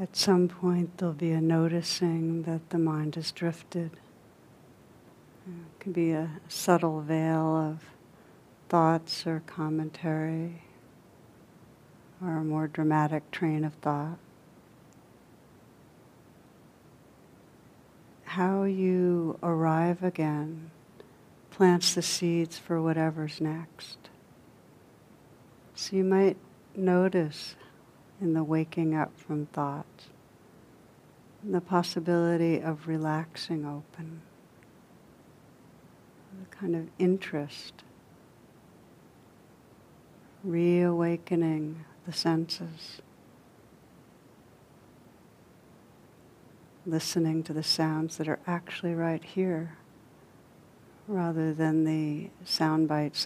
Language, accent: English, American